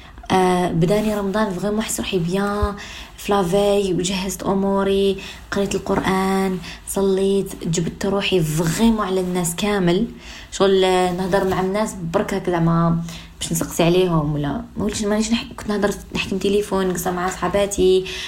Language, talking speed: Arabic, 135 wpm